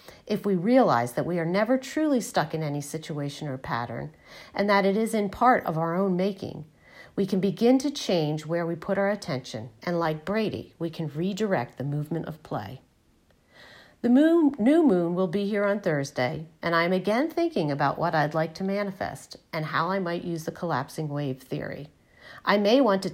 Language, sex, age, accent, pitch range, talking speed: English, female, 40-59, American, 155-205 Hz, 195 wpm